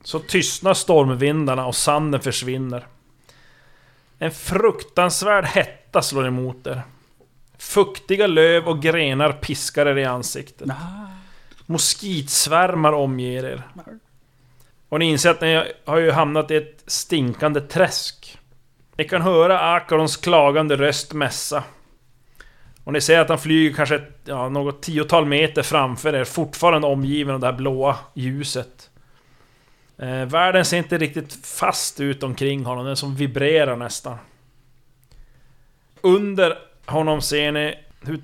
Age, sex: 30-49, male